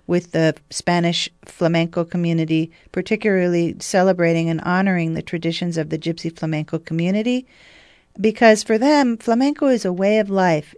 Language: English